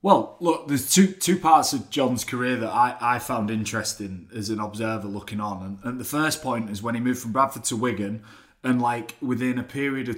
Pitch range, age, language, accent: 110-130 Hz, 20-39, English, British